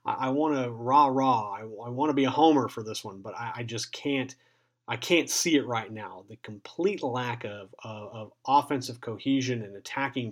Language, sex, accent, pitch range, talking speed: English, male, American, 115-135 Hz, 210 wpm